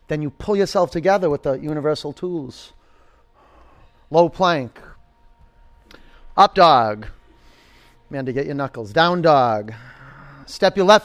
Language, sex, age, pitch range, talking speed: English, male, 40-59, 150-195 Hz, 125 wpm